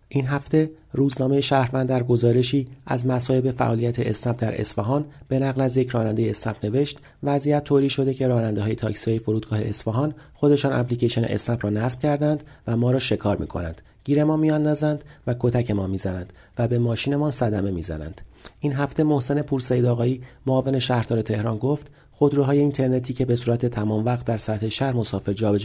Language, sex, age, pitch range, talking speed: Persian, male, 40-59, 110-140 Hz, 175 wpm